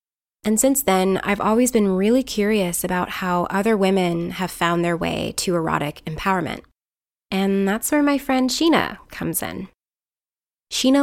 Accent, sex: American, female